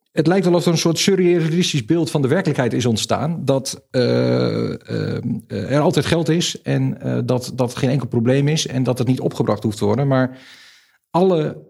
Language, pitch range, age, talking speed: Dutch, 120-145 Hz, 40-59, 200 wpm